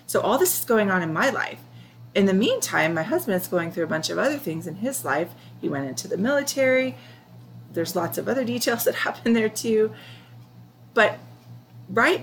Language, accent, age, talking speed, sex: English, American, 30-49, 200 wpm, female